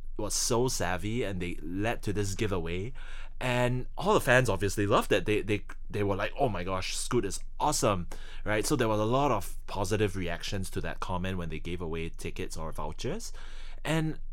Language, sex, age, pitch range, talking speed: English, male, 20-39, 95-125 Hz, 195 wpm